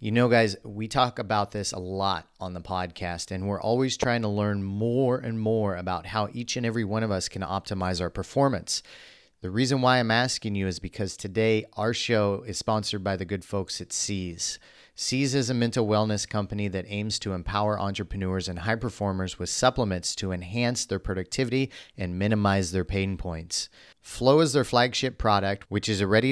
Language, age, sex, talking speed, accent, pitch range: English, 30-49, male, 195 wpm, American, 95-120 Hz